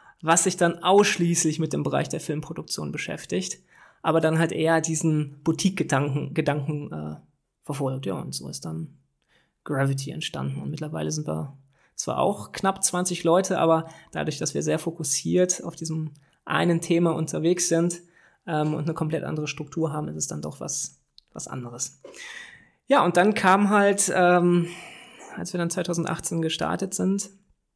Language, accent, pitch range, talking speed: German, German, 155-180 Hz, 160 wpm